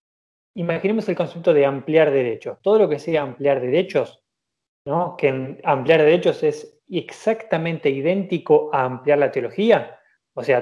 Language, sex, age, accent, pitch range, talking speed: Spanish, male, 20-39, Argentinian, 130-165 Hz, 140 wpm